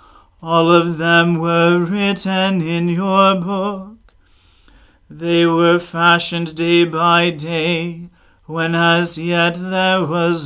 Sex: male